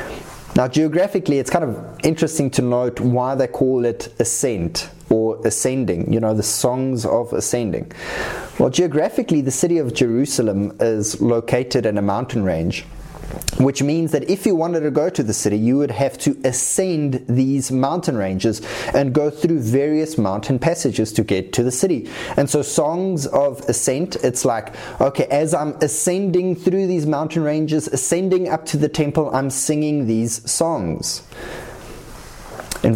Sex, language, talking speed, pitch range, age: male, English, 160 wpm, 125-175 Hz, 20-39